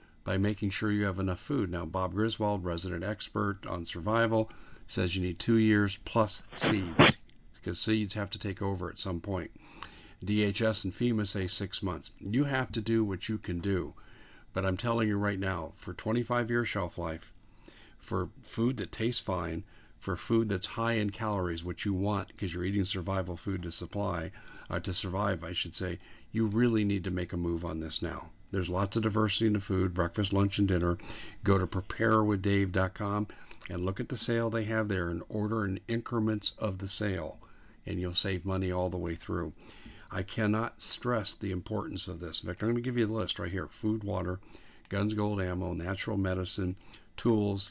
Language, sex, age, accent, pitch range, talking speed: English, male, 50-69, American, 90-110 Hz, 195 wpm